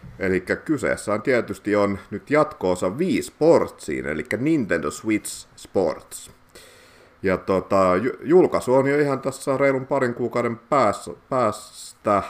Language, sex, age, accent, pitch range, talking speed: Finnish, male, 50-69, native, 90-110 Hz, 110 wpm